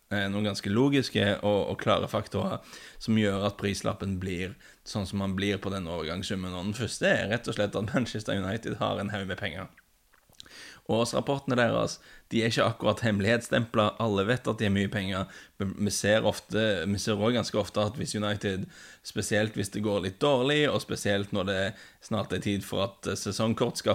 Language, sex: English, male